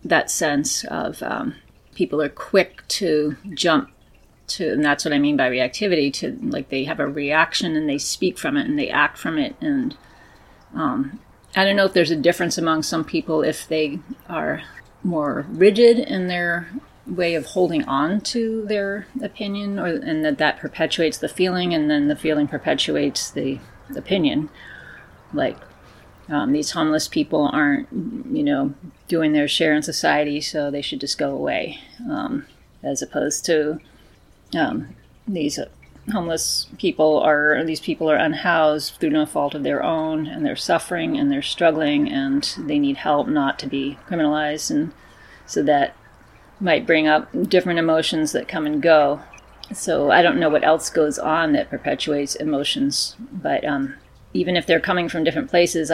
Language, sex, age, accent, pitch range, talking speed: English, female, 30-49, American, 150-240 Hz, 170 wpm